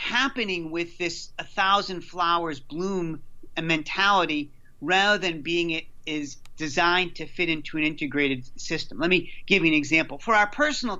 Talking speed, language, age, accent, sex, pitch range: 160 wpm, English, 40-59, American, male, 155-190 Hz